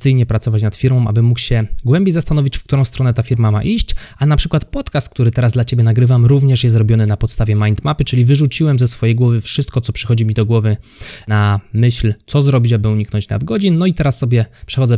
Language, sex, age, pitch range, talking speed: Polish, male, 20-39, 110-135 Hz, 215 wpm